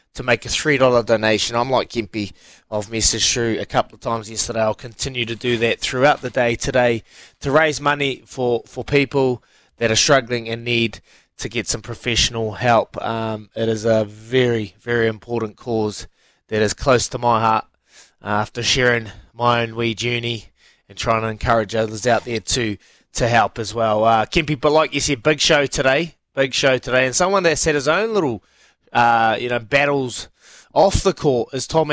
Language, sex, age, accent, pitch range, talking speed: English, male, 20-39, Australian, 115-140 Hz, 190 wpm